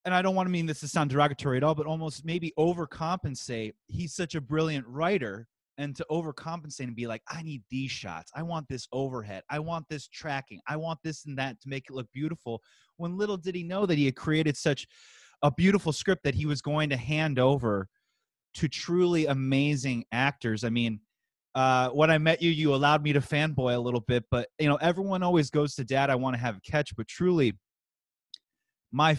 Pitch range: 120-155 Hz